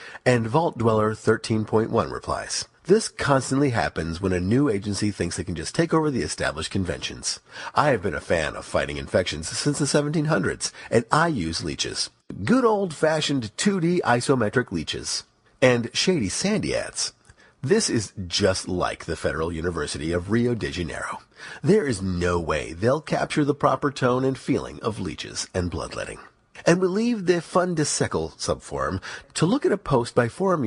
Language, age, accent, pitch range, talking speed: English, 40-59, American, 110-175 Hz, 165 wpm